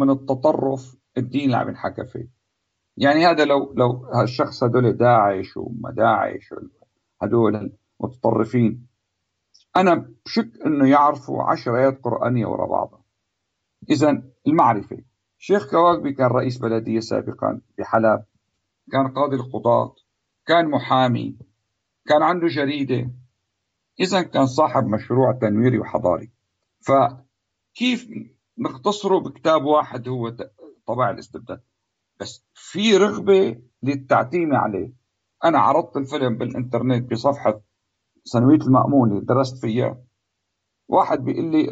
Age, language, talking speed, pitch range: 50-69, Arabic, 105 wpm, 110-140 Hz